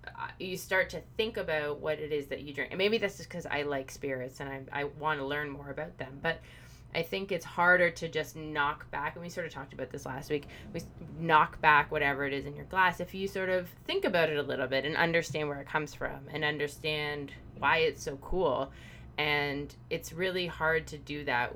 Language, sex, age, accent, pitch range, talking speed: English, female, 20-39, American, 130-160 Hz, 235 wpm